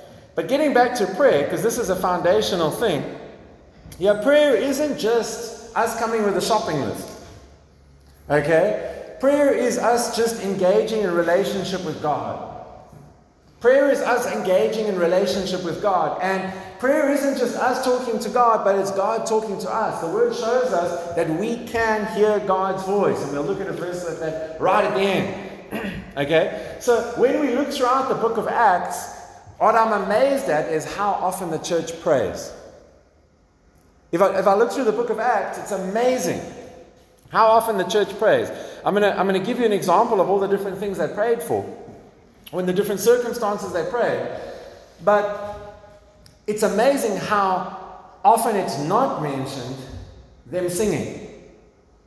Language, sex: English, male